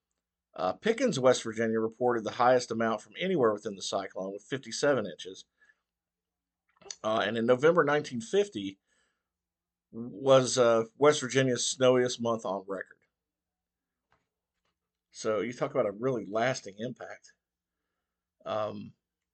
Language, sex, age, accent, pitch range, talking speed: English, male, 50-69, American, 100-130 Hz, 120 wpm